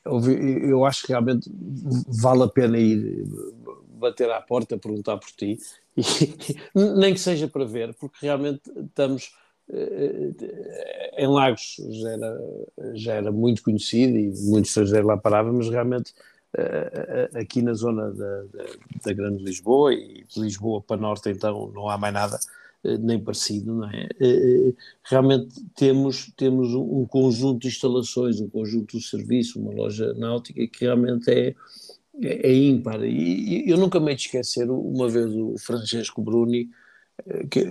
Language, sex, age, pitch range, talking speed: Portuguese, male, 50-69, 110-145 Hz, 145 wpm